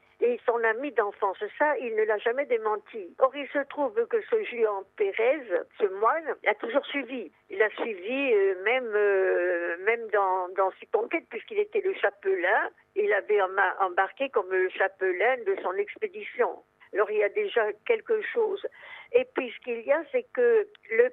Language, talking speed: French, 175 wpm